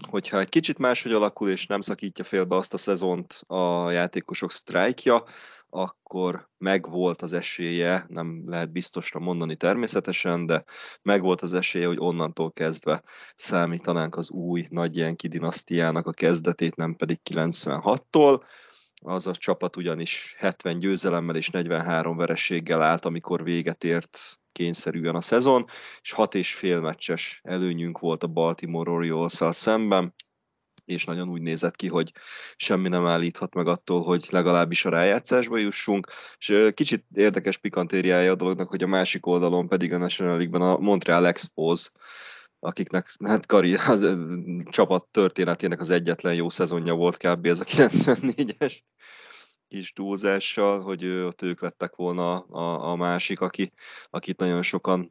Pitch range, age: 85-95 Hz, 20-39